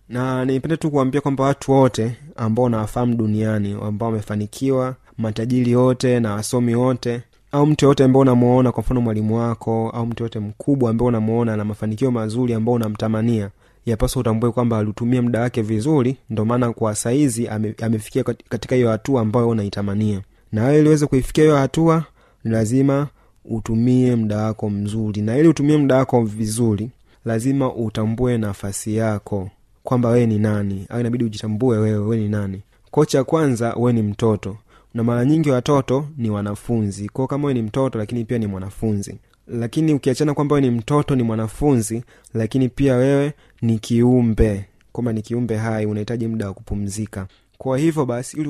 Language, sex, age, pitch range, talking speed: Swahili, male, 30-49, 110-130 Hz, 160 wpm